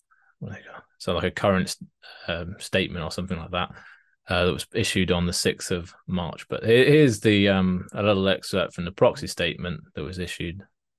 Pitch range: 90-105 Hz